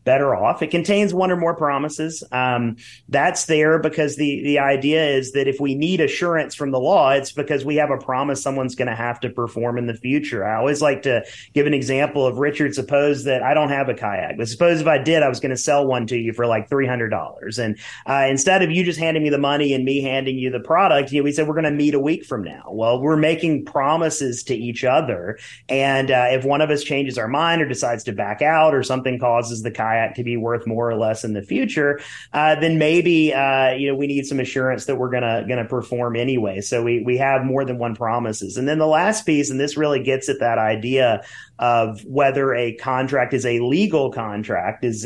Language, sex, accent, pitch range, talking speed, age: English, male, American, 120-145 Hz, 240 wpm, 30-49